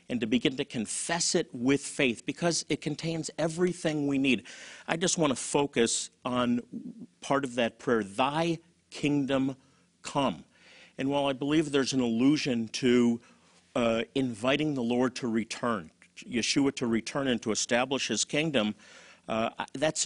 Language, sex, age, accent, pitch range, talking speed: English, male, 50-69, American, 120-160 Hz, 155 wpm